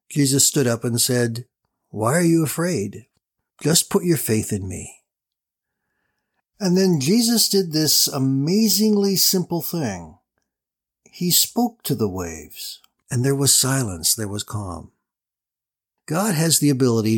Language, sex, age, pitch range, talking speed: English, male, 60-79, 110-150 Hz, 135 wpm